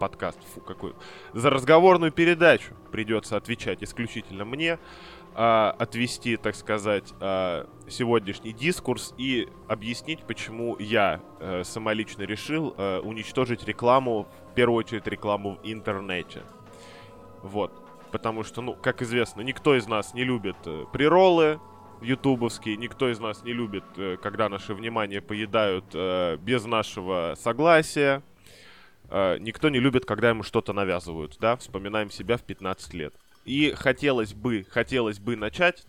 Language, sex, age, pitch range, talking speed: Russian, male, 10-29, 105-130 Hz, 130 wpm